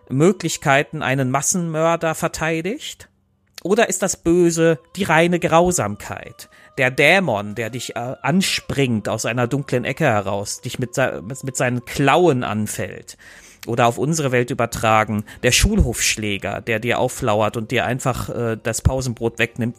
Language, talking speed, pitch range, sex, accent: German, 135 wpm, 110-140 Hz, male, German